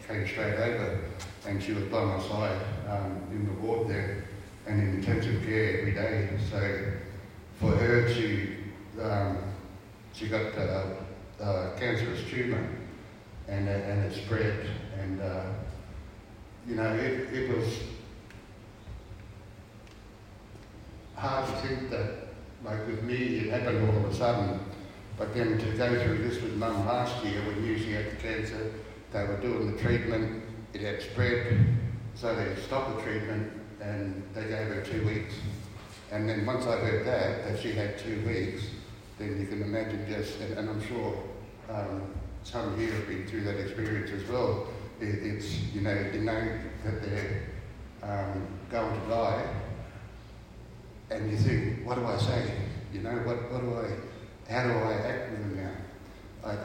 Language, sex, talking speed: English, male, 165 wpm